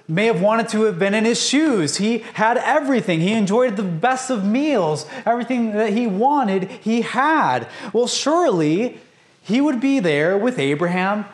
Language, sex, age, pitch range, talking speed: English, male, 30-49, 145-220 Hz, 170 wpm